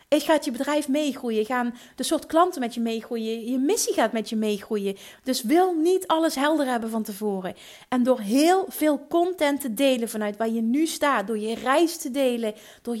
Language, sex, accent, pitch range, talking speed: Dutch, female, Dutch, 230-285 Hz, 205 wpm